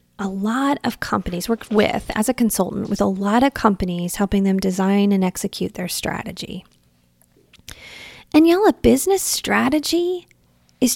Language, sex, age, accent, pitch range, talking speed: English, female, 30-49, American, 195-295 Hz, 150 wpm